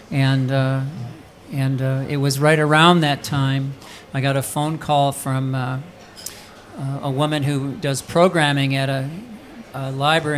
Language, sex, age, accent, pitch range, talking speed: English, male, 50-69, American, 135-155 Hz, 150 wpm